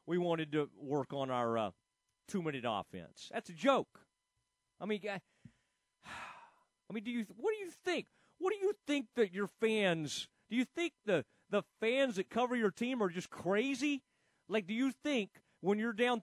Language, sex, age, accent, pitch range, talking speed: English, male, 40-59, American, 170-225 Hz, 185 wpm